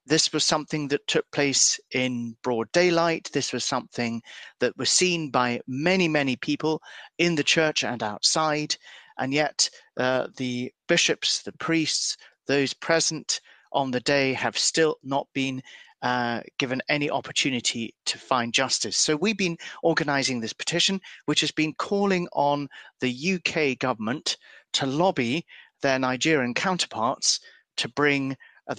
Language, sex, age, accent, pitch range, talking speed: English, male, 40-59, British, 125-165 Hz, 145 wpm